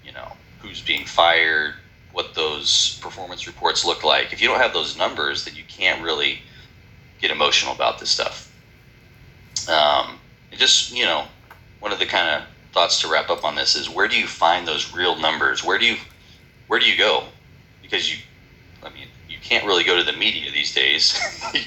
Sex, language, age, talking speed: male, English, 30-49, 190 wpm